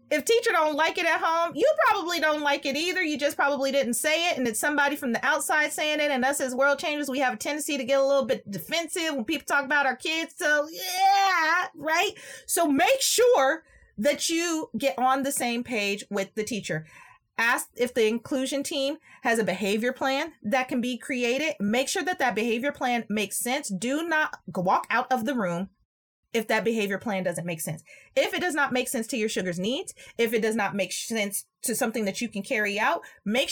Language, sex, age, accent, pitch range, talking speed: English, female, 30-49, American, 210-290 Hz, 220 wpm